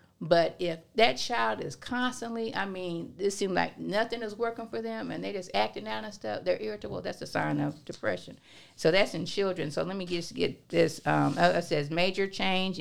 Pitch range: 150-185 Hz